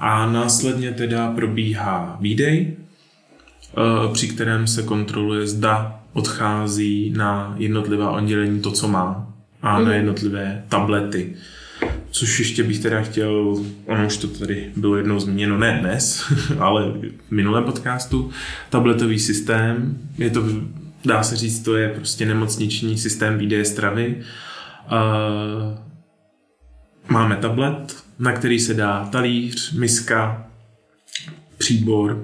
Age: 20-39